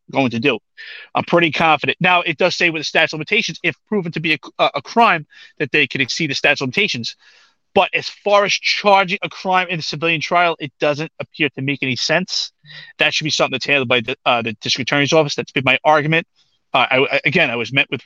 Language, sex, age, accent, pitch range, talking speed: English, male, 30-49, American, 145-180 Hz, 245 wpm